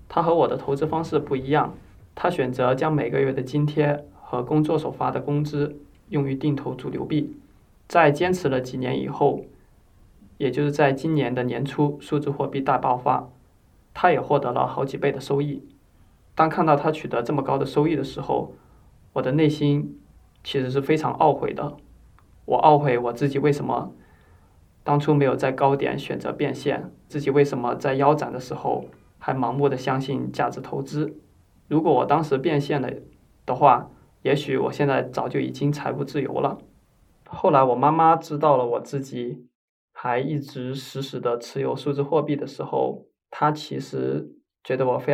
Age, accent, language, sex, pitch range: 20-39, native, Chinese, male, 130-150 Hz